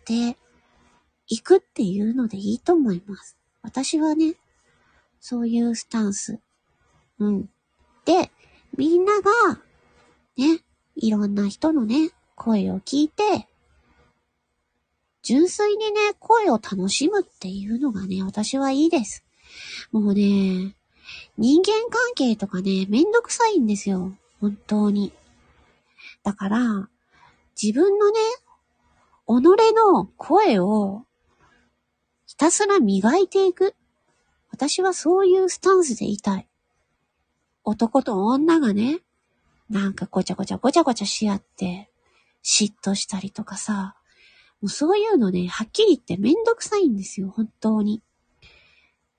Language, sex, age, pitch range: Japanese, female, 40-59, 200-335 Hz